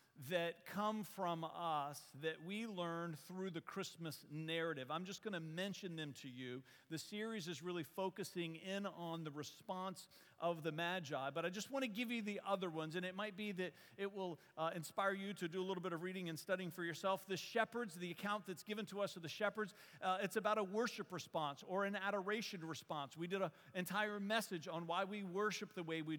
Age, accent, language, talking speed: 50-69, American, English, 220 wpm